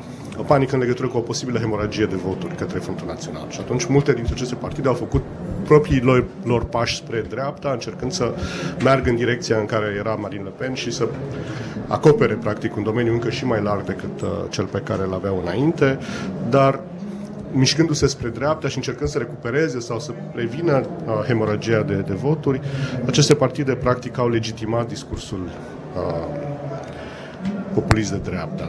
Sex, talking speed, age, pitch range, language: male, 165 wpm, 40-59, 115-140 Hz, Romanian